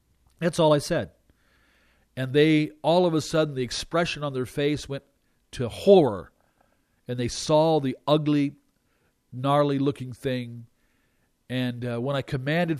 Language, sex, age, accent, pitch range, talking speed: English, male, 50-69, American, 125-155 Hz, 145 wpm